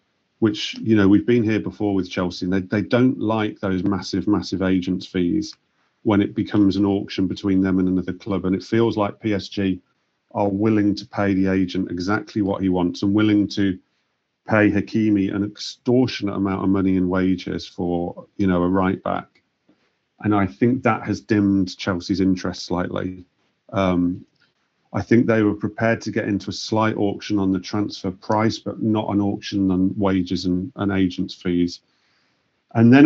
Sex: male